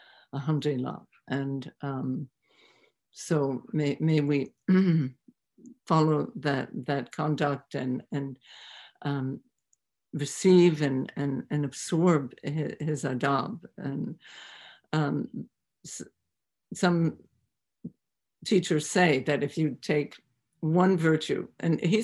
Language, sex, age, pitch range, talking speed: English, female, 60-79, 140-160 Hz, 100 wpm